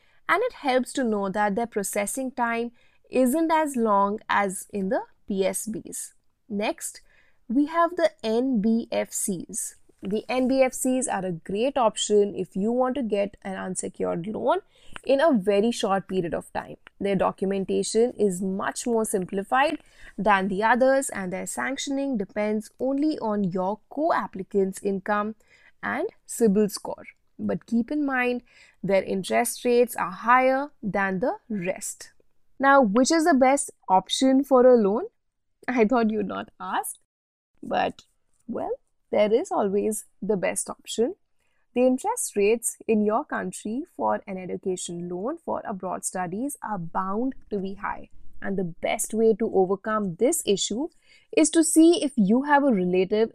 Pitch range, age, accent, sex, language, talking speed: 200-265 Hz, 20-39, Indian, female, English, 145 wpm